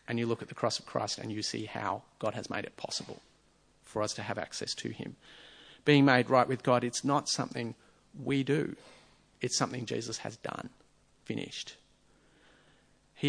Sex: male